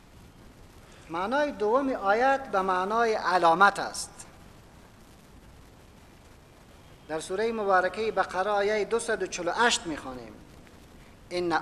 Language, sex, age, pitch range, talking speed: English, male, 50-69, 150-210 Hz, 90 wpm